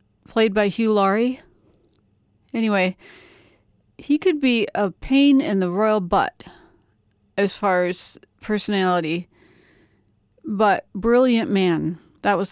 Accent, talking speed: American, 110 wpm